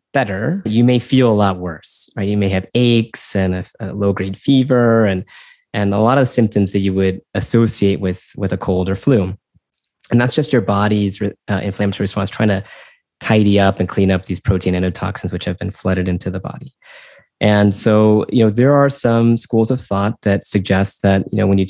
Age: 20-39